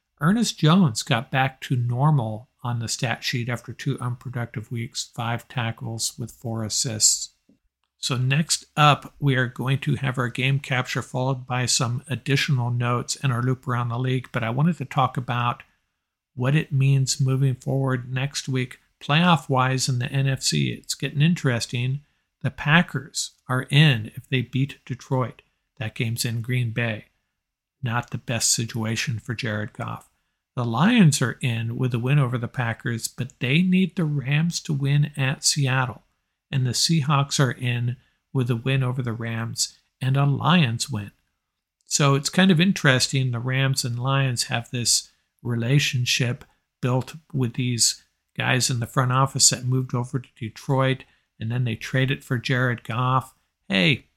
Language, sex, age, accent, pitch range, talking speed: English, male, 50-69, American, 120-140 Hz, 165 wpm